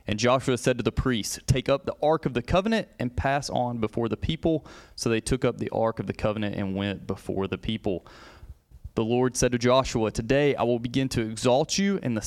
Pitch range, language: 110-135 Hz, English